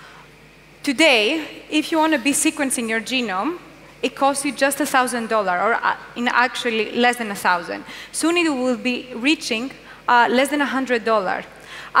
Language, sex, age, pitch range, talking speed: English, female, 20-39, 235-285 Hz, 150 wpm